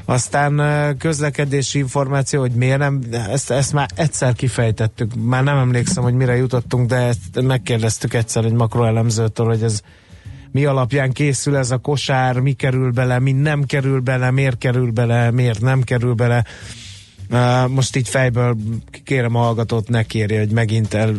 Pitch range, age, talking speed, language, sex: 110-135 Hz, 30-49, 155 wpm, Hungarian, male